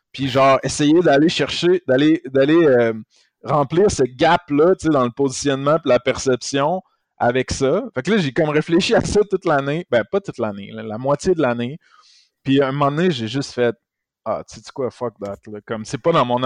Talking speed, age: 215 wpm, 20-39